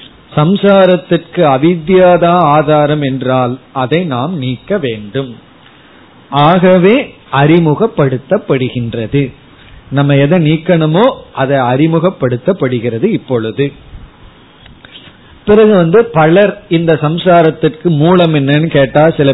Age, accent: 30-49, native